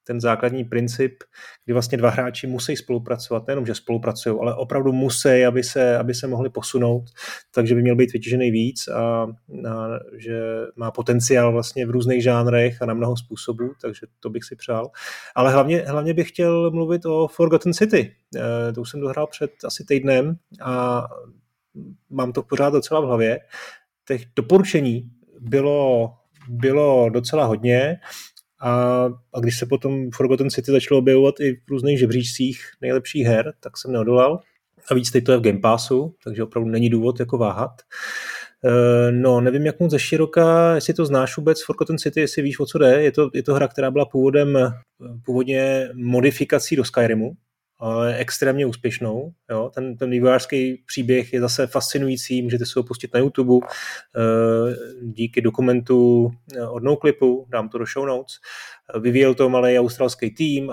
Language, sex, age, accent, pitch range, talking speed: Czech, male, 30-49, native, 120-140 Hz, 165 wpm